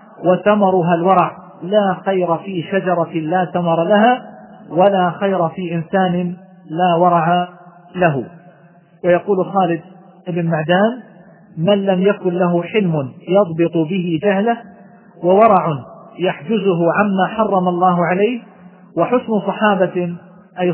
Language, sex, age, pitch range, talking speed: Arabic, male, 40-59, 175-195 Hz, 105 wpm